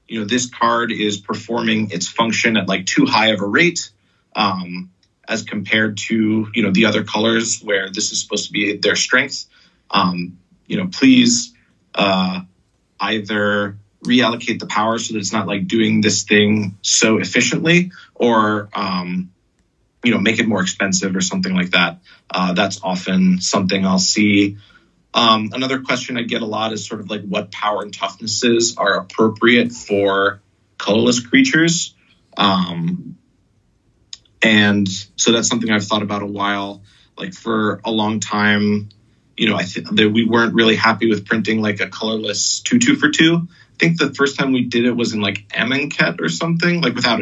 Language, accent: English, American